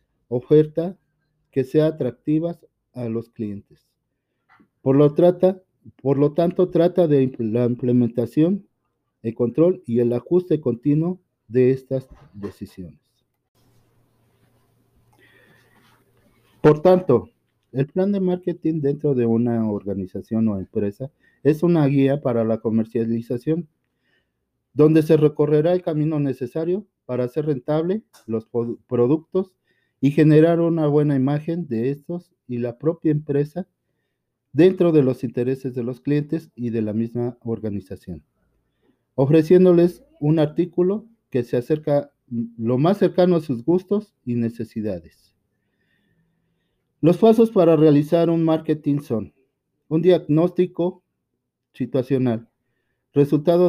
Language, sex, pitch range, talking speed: Greek, male, 120-165 Hz, 115 wpm